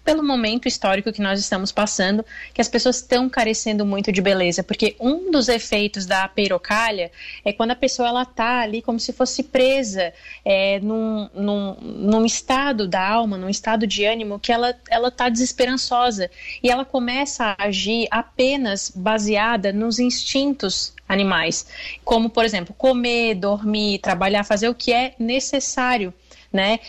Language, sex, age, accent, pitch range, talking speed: Portuguese, female, 20-39, Brazilian, 210-250 Hz, 155 wpm